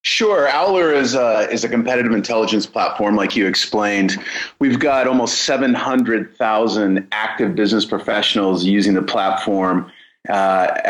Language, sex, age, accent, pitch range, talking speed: English, male, 30-49, American, 95-110 Hz, 125 wpm